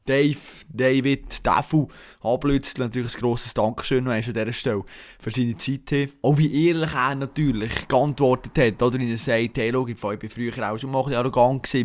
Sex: male